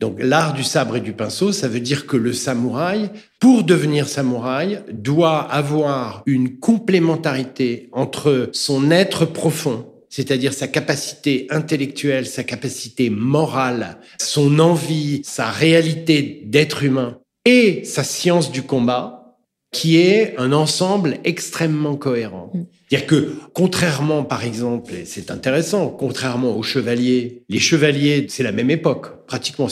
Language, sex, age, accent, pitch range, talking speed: French, male, 50-69, French, 130-165 Hz, 135 wpm